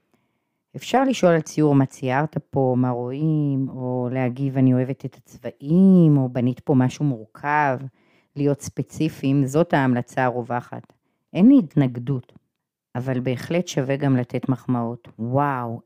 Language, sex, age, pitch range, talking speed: Hebrew, female, 30-49, 125-155 Hz, 130 wpm